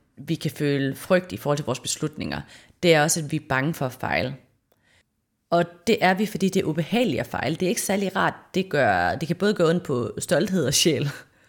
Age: 30-49